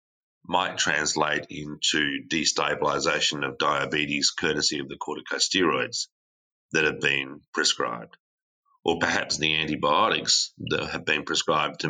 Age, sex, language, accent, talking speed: 30-49, male, English, Australian, 115 wpm